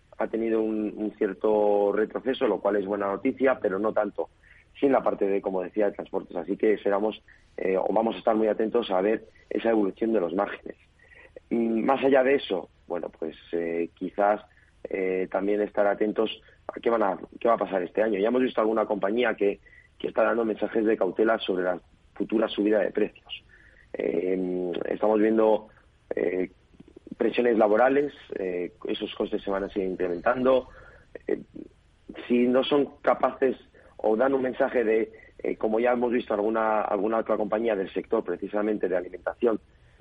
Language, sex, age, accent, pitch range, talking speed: Spanish, male, 40-59, Spanish, 100-120 Hz, 175 wpm